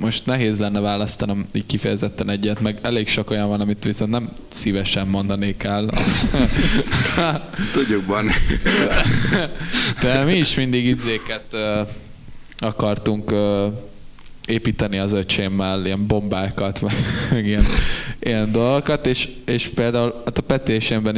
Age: 20-39